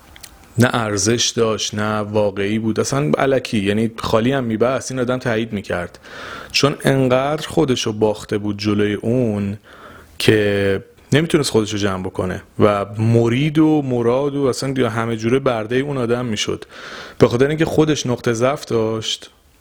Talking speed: 145 wpm